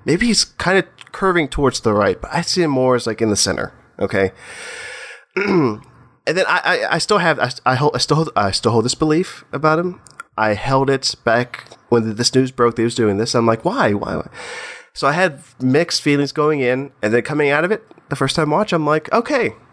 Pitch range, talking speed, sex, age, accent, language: 105-145 Hz, 235 wpm, male, 20-39, American, English